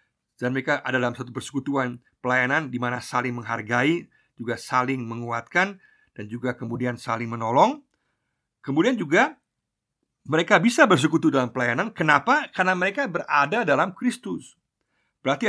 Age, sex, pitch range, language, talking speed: 50-69, male, 125-175 Hz, Indonesian, 125 wpm